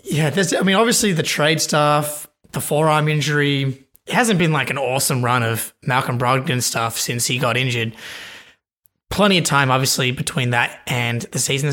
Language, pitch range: English, 130-160 Hz